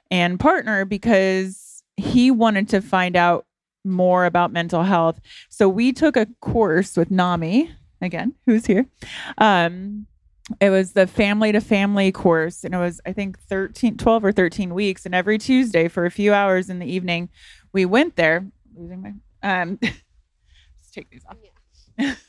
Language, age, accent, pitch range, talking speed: English, 30-49, American, 175-210 Hz, 145 wpm